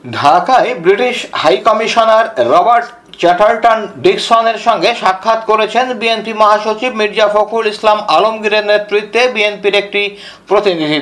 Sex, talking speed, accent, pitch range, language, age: male, 110 wpm, native, 195-225 Hz, Bengali, 50-69